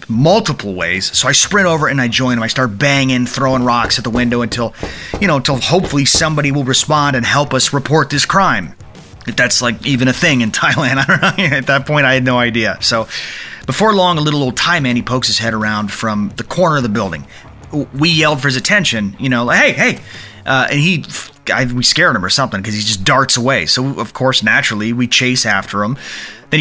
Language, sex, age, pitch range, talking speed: English, male, 30-49, 115-150 Hz, 230 wpm